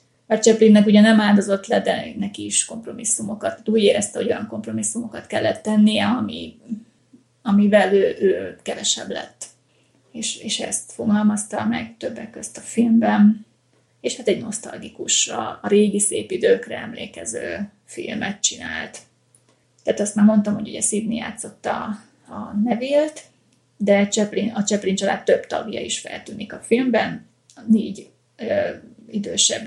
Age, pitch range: 30-49, 205-235 Hz